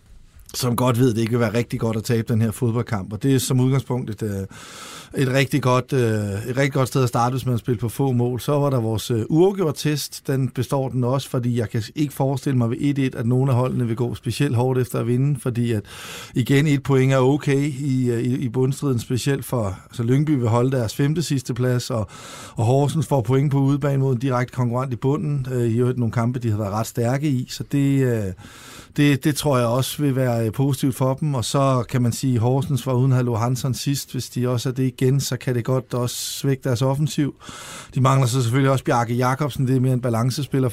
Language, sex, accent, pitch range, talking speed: Danish, male, native, 120-140 Hz, 225 wpm